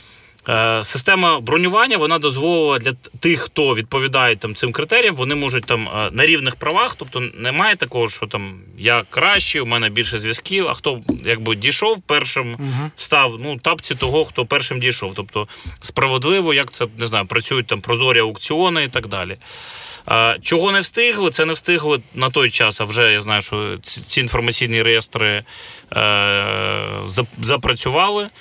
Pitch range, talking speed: 115-150 Hz, 150 wpm